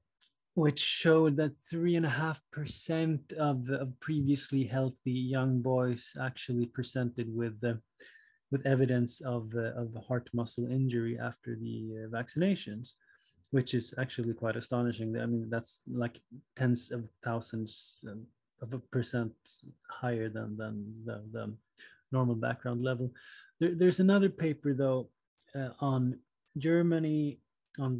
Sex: male